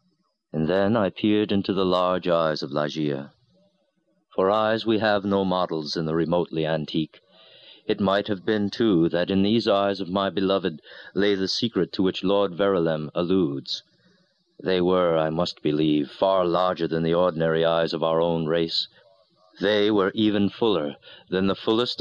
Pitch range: 85-105 Hz